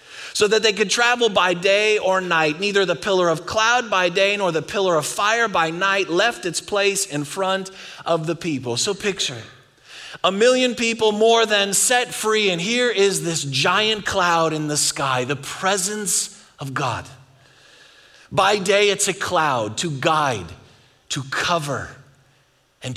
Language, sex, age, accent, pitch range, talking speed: English, male, 30-49, American, 135-195 Hz, 165 wpm